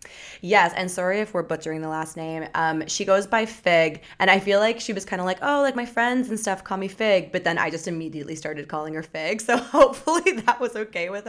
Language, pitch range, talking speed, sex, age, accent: English, 160-210 Hz, 250 wpm, female, 20-39, American